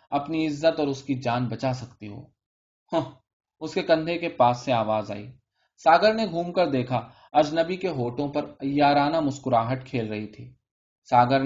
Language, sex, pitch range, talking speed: Urdu, male, 120-155 Hz, 175 wpm